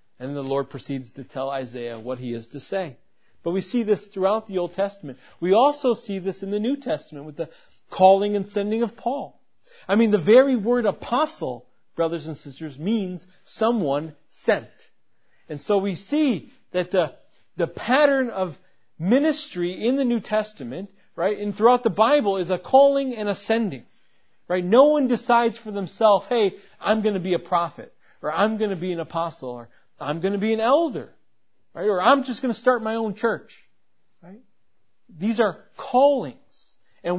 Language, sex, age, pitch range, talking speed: English, male, 40-59, 175-235 Hz, 185 wpm